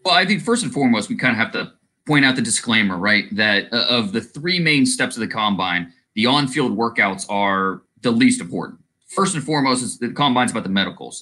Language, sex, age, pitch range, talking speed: English, male, 30-49, 105-170 Hz, 215 wpm